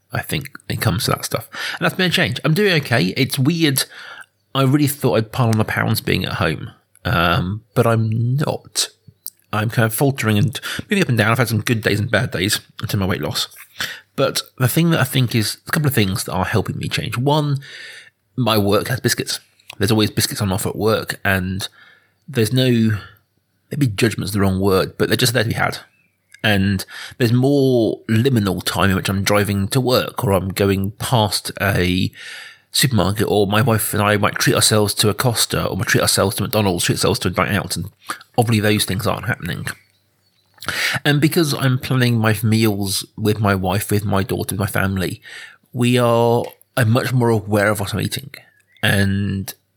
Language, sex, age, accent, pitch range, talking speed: English, male, 30-49, British, 100-130 Hz, 205 wpm